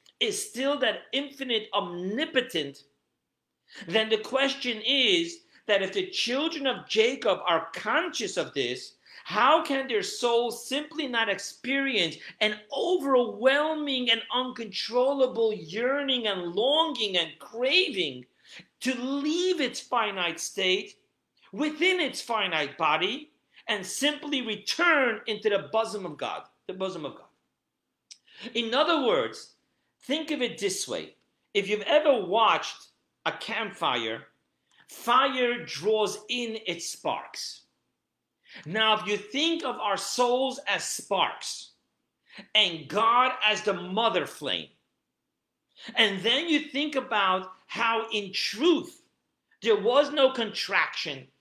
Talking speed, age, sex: 120 wpm, 50-69, male